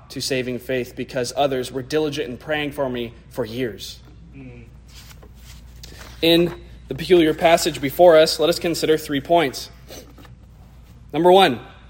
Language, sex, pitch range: English, male, 150-215 Hz